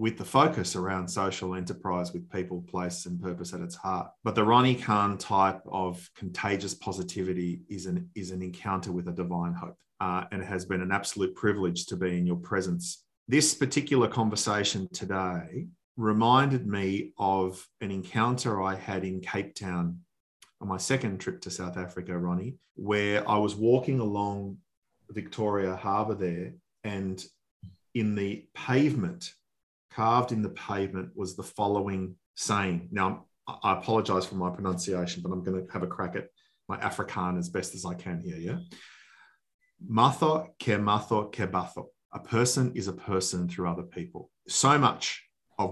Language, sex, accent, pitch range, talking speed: English, male, Australian, 90-105 Hz, 160 wpm